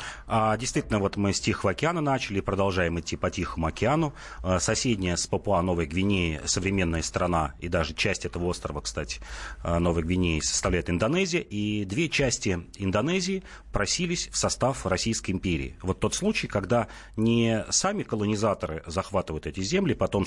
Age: 30-49